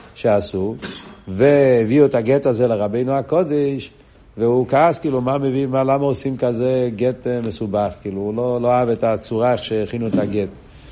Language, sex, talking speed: Hebrew, male, 155 wpm